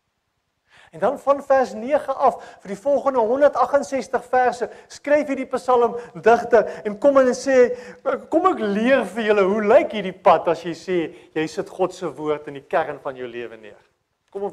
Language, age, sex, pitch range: English, 40-59, male, 175-255 Hz